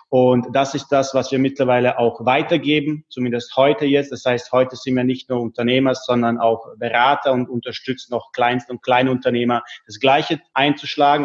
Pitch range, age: 125-140 Hz, 30-49